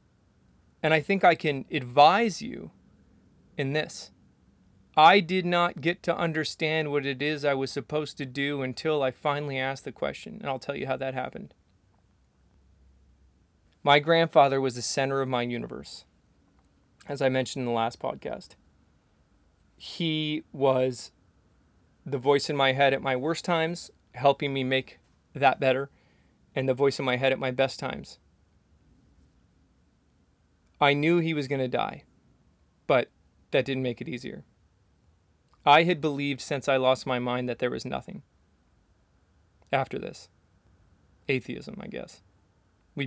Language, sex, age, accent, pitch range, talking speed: English, male, 30-49, American, 95-145 Hz, 150 wpm